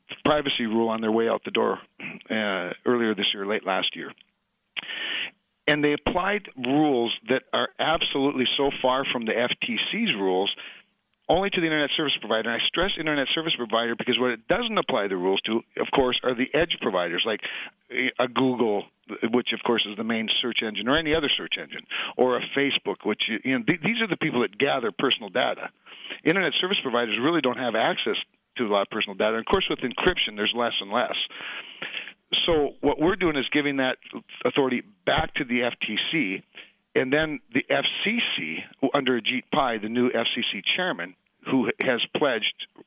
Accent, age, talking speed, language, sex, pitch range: American, 50-69, 185 wpm, English, male, 110-140 Hz